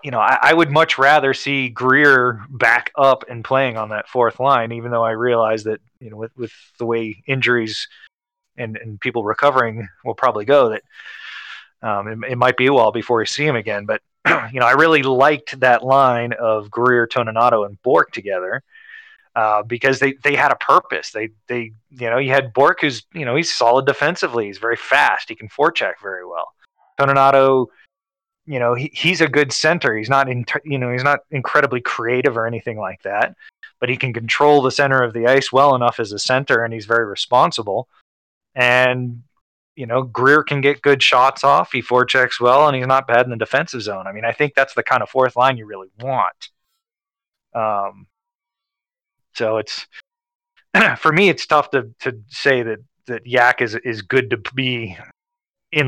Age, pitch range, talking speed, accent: 20-39, 115-145 Hz, 195 wpm, American